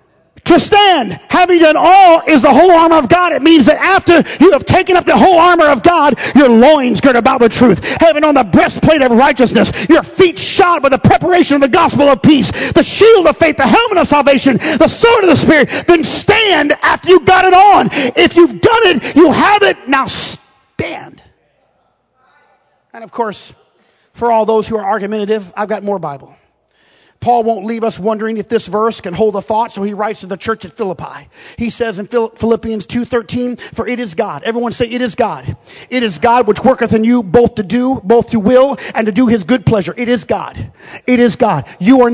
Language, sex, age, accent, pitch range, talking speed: English, male, 40-59, American, 230-295 Hz, 215 wpm